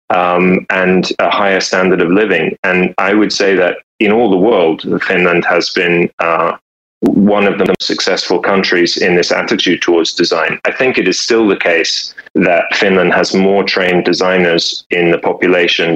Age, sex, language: 30-49, male, Finnish